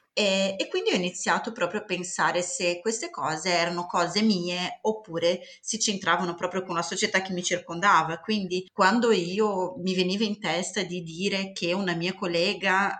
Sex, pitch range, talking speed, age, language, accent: female, 170-200 Hz, 170 wpm, 30-49, Italian, native